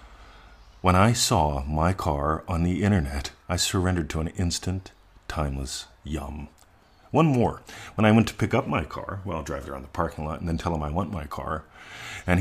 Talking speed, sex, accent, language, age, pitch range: 195 wpm, male, American, English, 40-59, 75-95 Hz